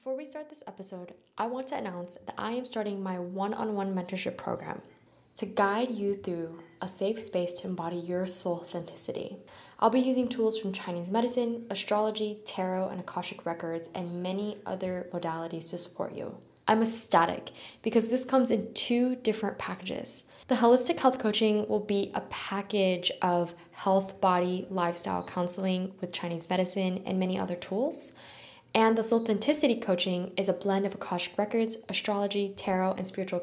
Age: 10-29